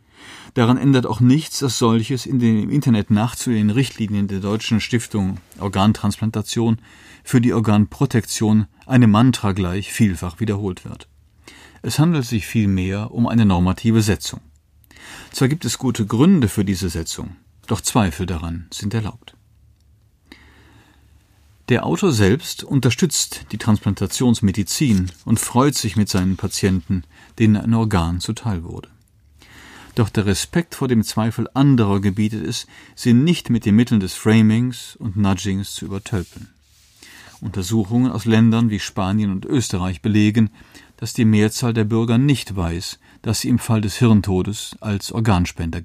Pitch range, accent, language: 100-115 Hz, German, German